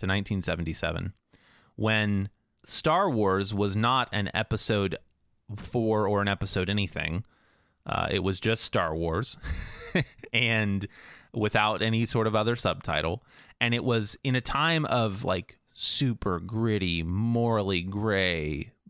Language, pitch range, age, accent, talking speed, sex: English, 100-125 Hz, 30-49, American, 125 wpm, male